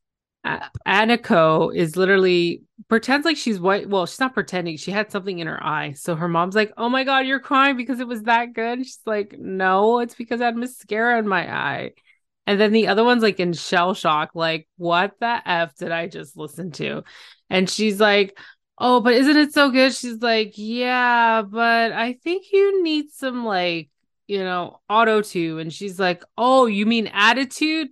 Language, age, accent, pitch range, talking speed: English, 20-39, American, 175-230 Hz, 200 wpm